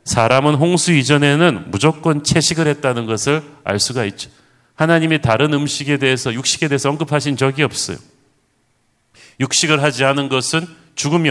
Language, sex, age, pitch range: Korean, male, 40-59, 125-150 Hz